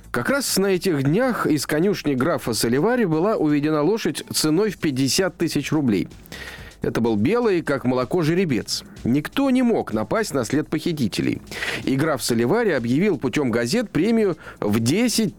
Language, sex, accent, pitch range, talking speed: Russian, male, native, 135-220 Hz, 150 wpm